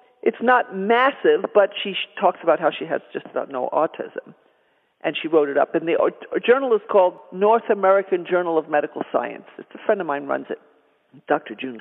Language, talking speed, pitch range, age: English, 205 wpm, 175-240 Hz, 50-69